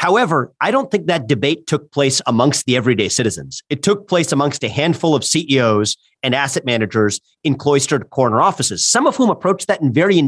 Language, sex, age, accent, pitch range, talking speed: English, male, 40-59, American, 125-170 Hz, 200 wpm